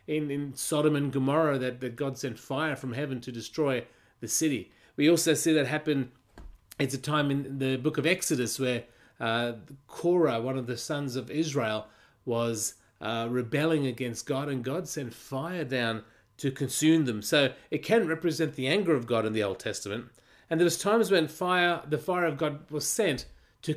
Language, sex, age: English, male, 30-49